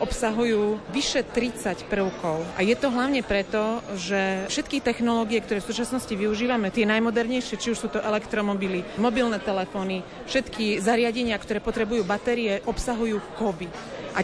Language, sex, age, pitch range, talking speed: Slovak, female, 30-49, 200-230 Hz, 140 wpm